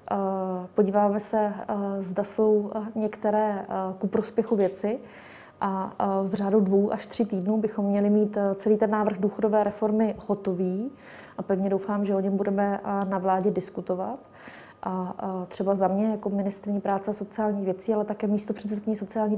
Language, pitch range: Czech, 195-215 Hz